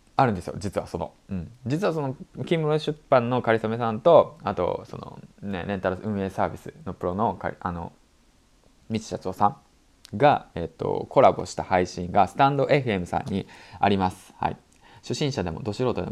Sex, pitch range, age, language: male, 95-120 Hz, 20-39, Japanese